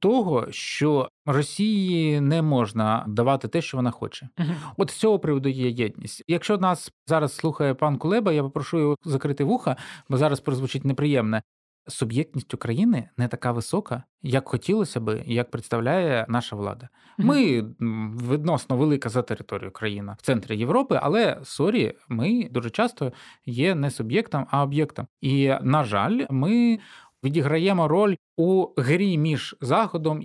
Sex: male